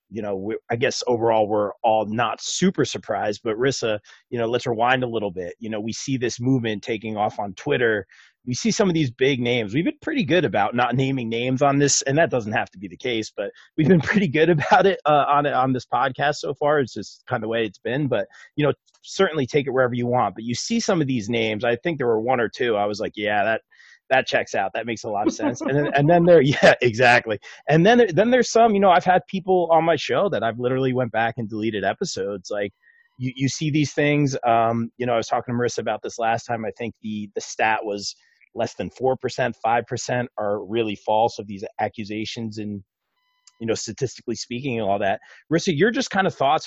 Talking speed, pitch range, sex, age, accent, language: 245 wpm, 115-150 Hz, male, 30-49, American, English